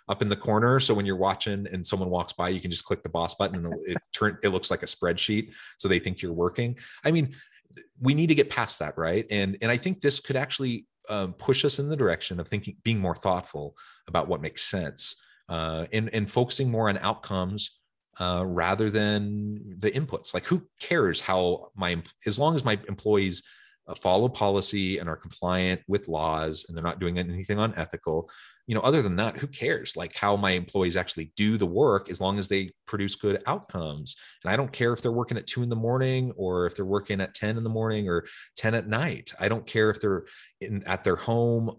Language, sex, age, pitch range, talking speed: English, male, 30-49, 90-115 Hz, 225 wpm